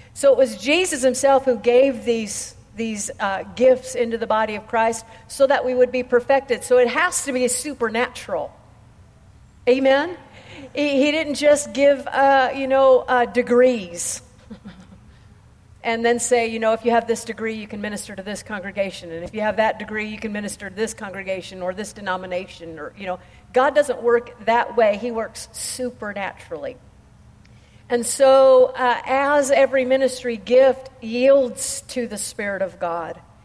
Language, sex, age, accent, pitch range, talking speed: English, female, 50-69, American, 195-250 Hz, 170 wpm